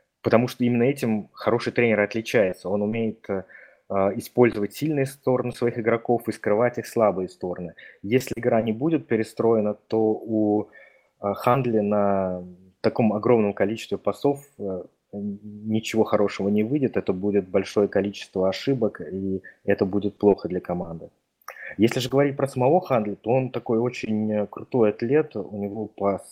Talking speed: 150 wpm